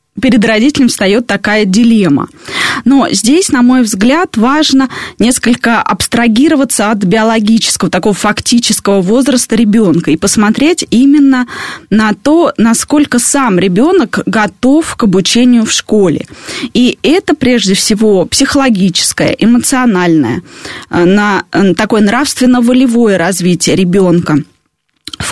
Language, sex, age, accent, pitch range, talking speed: Russian, female, 20-39, native, 200-255 Hz, 105 wpm